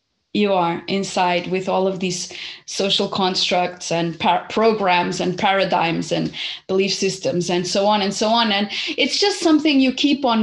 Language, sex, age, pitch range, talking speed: English, female, 30-49, 205-255 Hz, 165 wpm